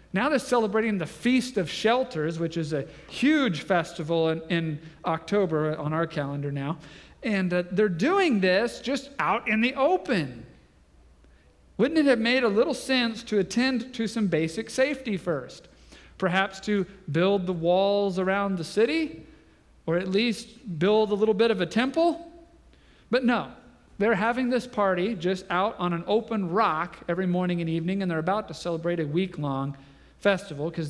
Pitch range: 155-220 Hz